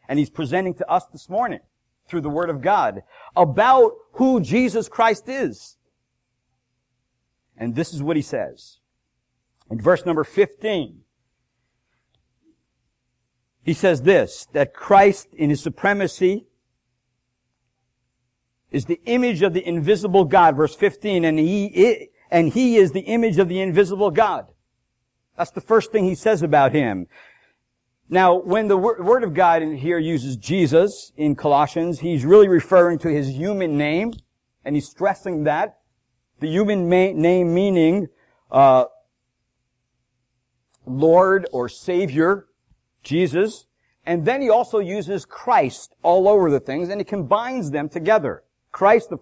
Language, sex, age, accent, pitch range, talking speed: English, male, 50-69, American, 140-205 Hz, 135 wpm